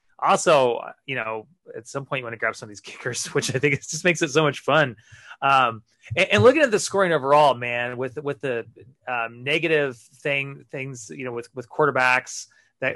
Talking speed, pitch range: 215 wpm, 120-150 Hz